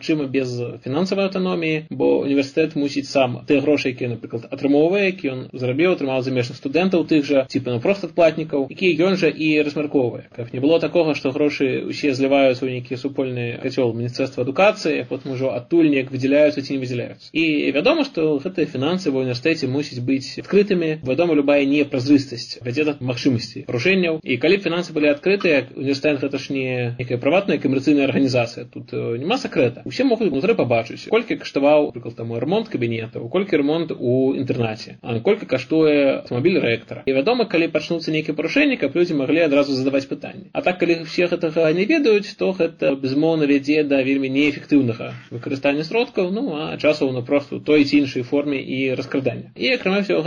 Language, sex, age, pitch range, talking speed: Russian, male, 20-39, 130-165 Hz, 170 wpm